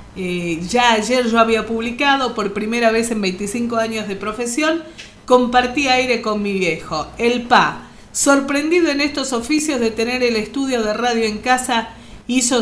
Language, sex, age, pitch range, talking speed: Spanish, female, 40-59, 195-250 Hz, 160 wpm